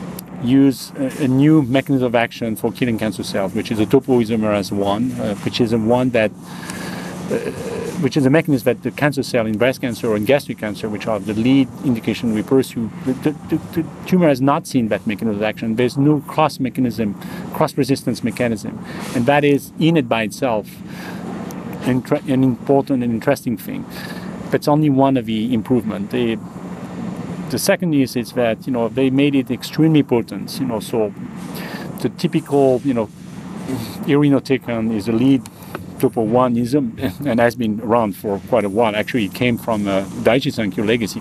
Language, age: English, 40-59